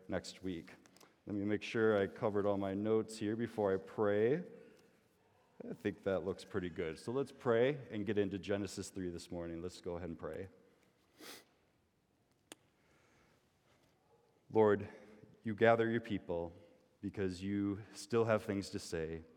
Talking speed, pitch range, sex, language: 150 wpm, 90-105 Hz, male, English